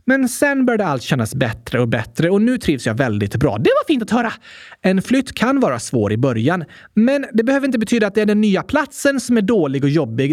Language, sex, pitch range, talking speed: Swedish, male, 155-260 Hz, 245 wpm